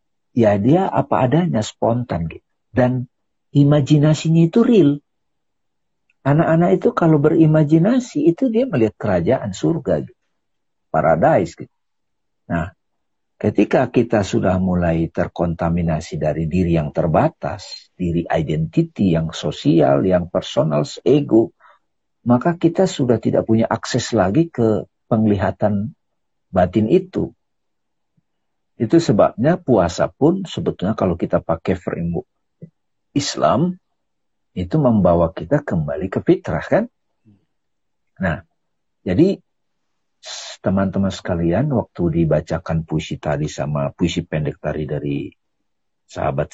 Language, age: Indonesian, 50-69